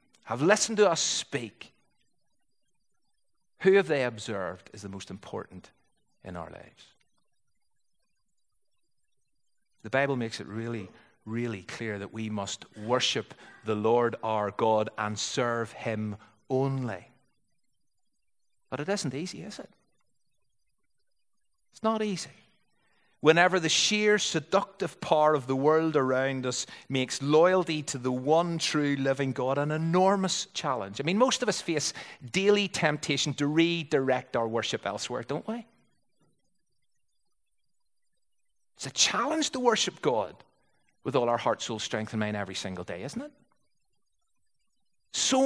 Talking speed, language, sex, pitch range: 130 wpm, English, male, 115-185 Hz